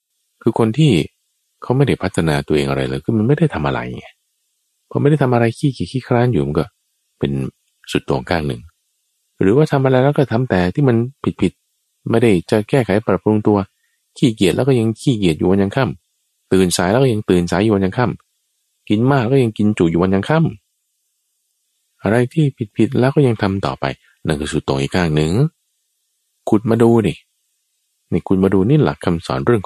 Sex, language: male, Thai